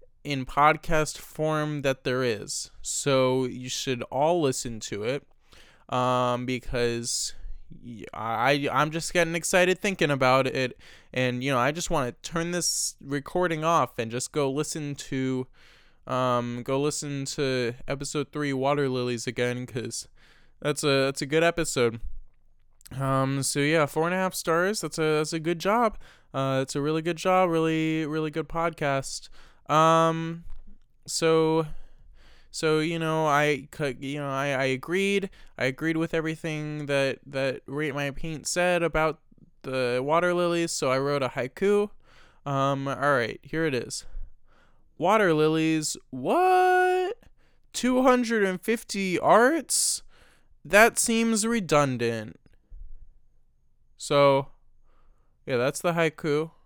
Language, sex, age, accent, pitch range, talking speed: English, male, 20-39, American, 135-165 Hz, 135 wpm